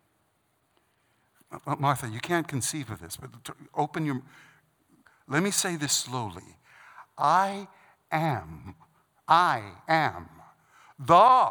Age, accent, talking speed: 60-79, American, 100 wpm